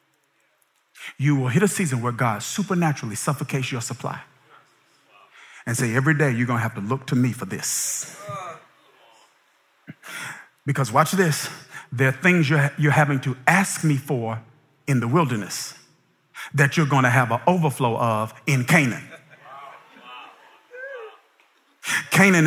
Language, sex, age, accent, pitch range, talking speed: English, male, 50-69, American, 140-200 Hz, 135 wpm